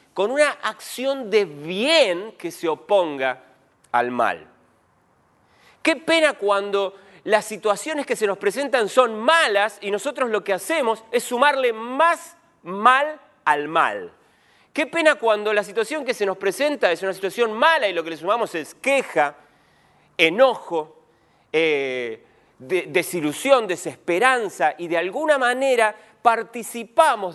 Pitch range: 165-255 Hz